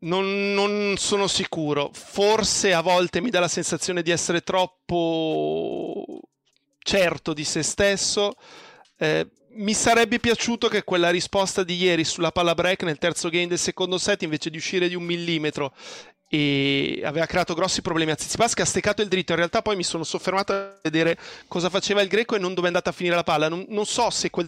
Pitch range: 165-195 Hz